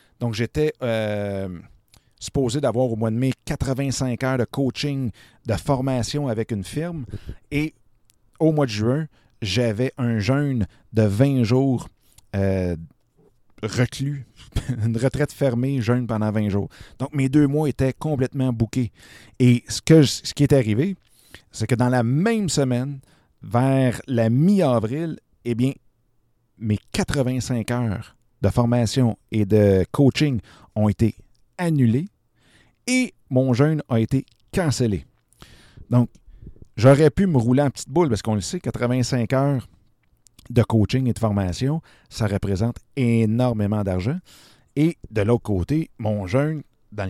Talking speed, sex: 140 wpm, male